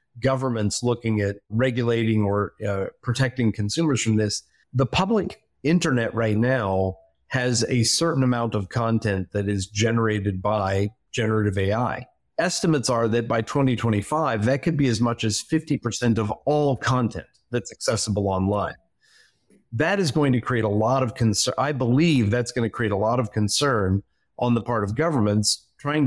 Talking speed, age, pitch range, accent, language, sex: 160 wpm, 40-59, 110-130 Hz, American, English, male